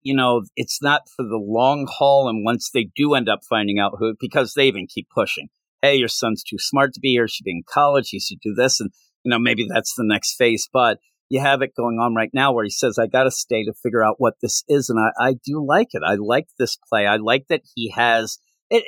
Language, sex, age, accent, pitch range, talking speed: English, male, 50-69, American, 110-145 Hz, 260 wpm